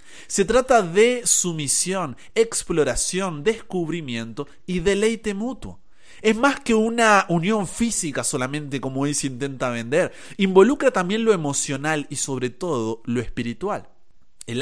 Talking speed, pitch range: 125 wpm, 120-180 Hz